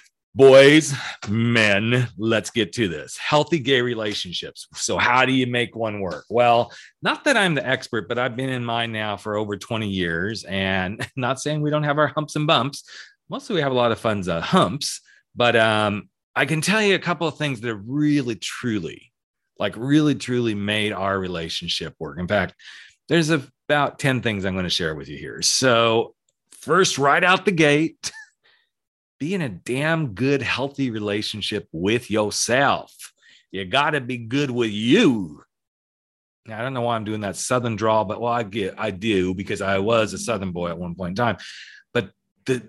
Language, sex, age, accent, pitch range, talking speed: English, male, 40-59, American, 105-140 Hz, 185 wpm